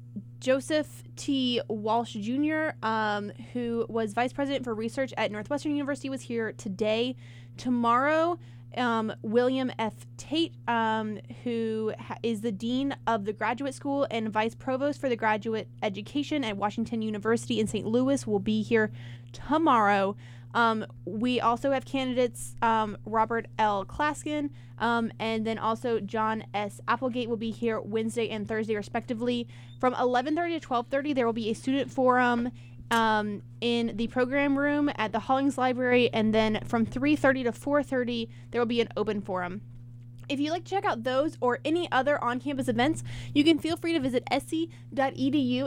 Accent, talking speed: American, 160 wpm